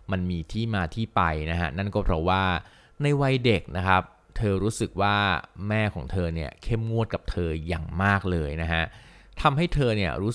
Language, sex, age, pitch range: Thai, male, 20-39, 90-120 Hz